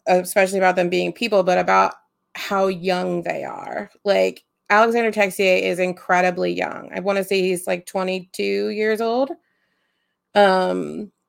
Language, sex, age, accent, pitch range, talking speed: English, female, 30-49, American, 180-205 Hz, 145 wpm